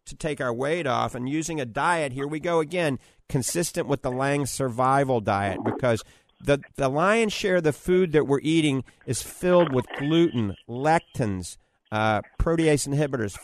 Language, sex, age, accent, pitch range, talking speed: English, male, 50-69, American, 120-155 Hz, 170 wpm